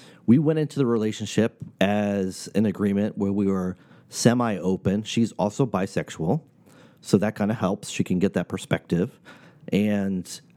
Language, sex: English, male